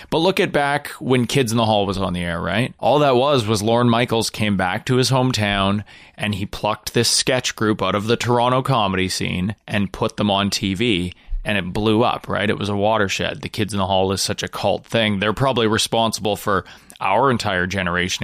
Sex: male